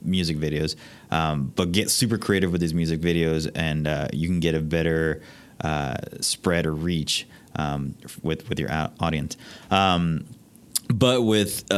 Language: English